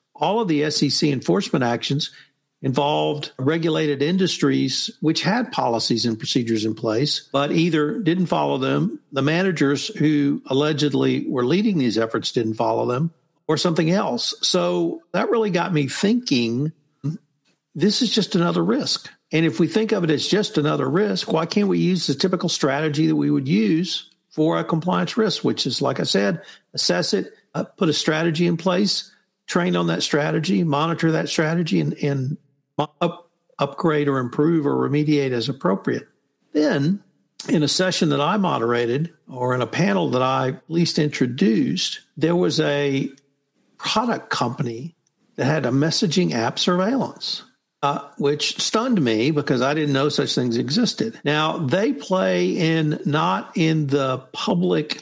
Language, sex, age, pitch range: English, male, 60-79, 140-180 Hz